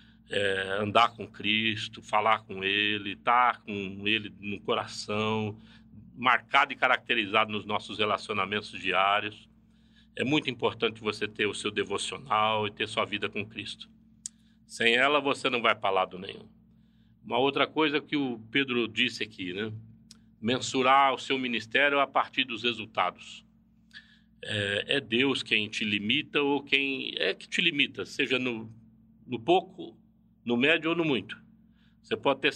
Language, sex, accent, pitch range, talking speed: Portuguese, male, Brazilian, 110-140 Hz, 150 wpm